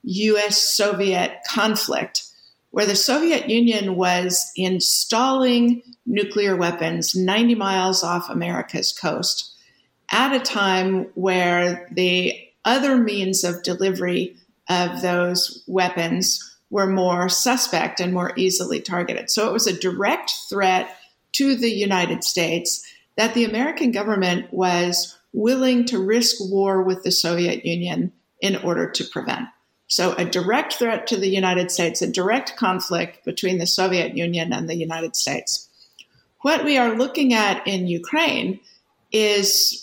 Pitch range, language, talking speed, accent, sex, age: 180-230 Hz, English, 135 wpm, American, female, 50-69